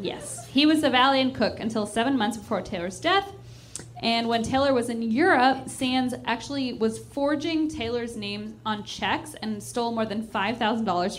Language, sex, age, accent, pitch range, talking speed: English, female, 10-29, American, 195-240 Hz, 165 wpm